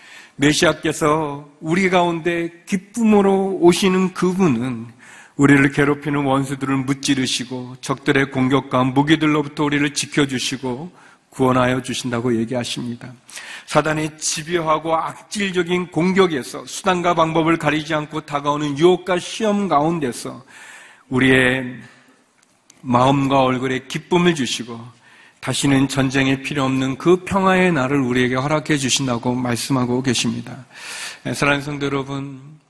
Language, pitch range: Korean, 130-165 Hz